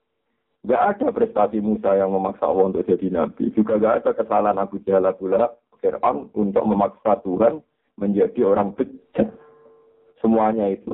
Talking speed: 135 wpm